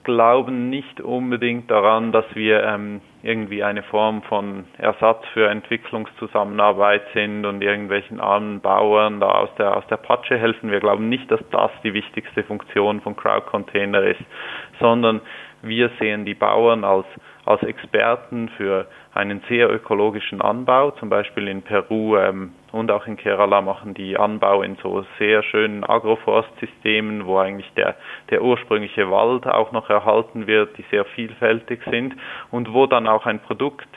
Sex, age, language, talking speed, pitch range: male, 20-39, German, 155 wpm, 100-115 Hz